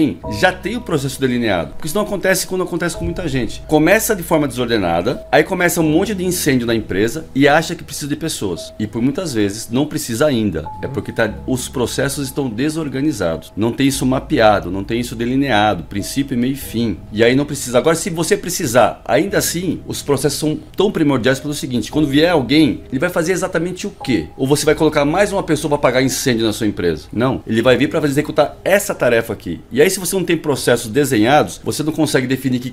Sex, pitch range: male, 130-195 Hz